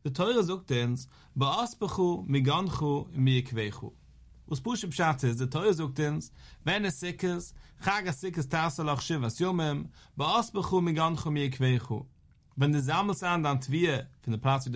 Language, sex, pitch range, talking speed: English, male, 130-175 Hz, 125 wpm